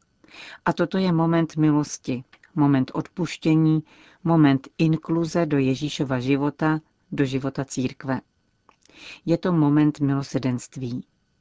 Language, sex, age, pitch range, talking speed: Czech, female, 40-59, 135-160 Hz, 100 wpm